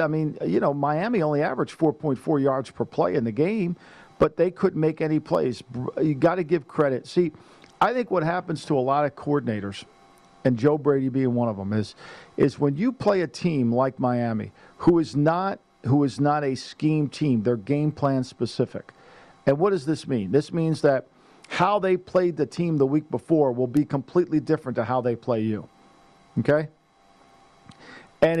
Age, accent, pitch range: 50-69, American, 135-170 Hz